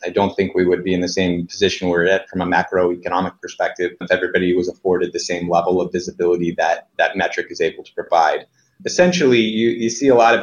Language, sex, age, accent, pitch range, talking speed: English, male, 30-49, American, 90-100 Hz, 225 wpm